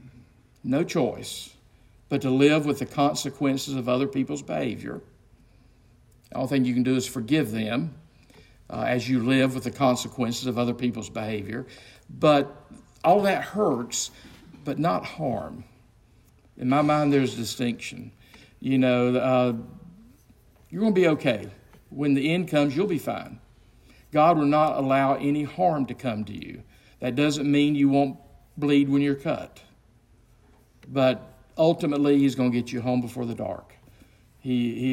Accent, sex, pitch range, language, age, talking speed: American, male, 120-140 Hz, English, 50-69, 160 wpm